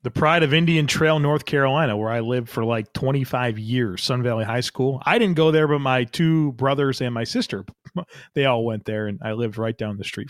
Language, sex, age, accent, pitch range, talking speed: English, male, 30-49, American, 125-150 Hz, 240 wpm